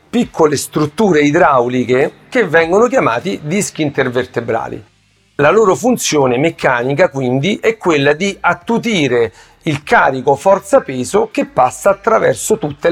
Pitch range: 140-205 Hz